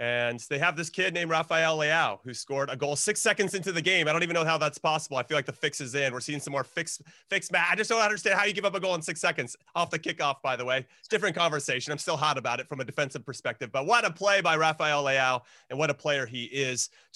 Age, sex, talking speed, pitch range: 30-49, male, 295 wpm, 130-160 Hz